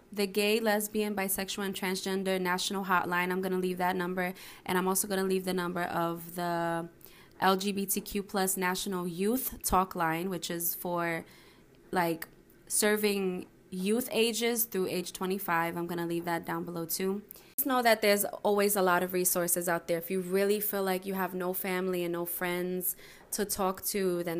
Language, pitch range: English, 175-200 Hz